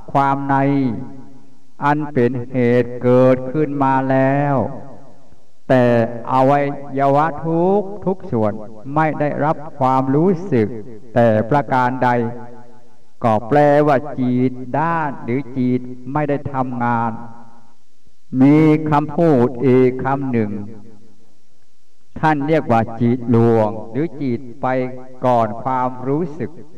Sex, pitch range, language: male, 115-140 Hz, English